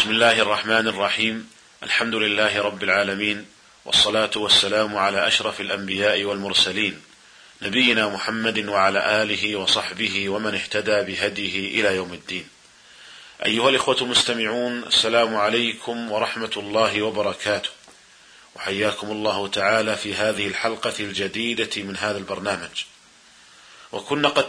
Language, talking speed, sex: Arabic, 110 wpm, male